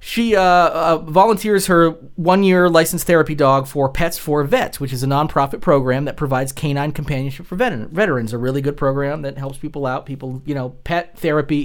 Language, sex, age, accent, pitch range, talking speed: English, male, 30-49, American, 135-175 Hz, 195 wpm